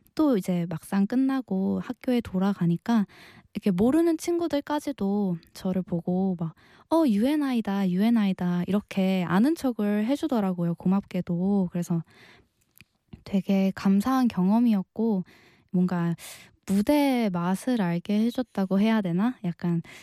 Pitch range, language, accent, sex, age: 180-230 Hz, Korean, native, female, 20-39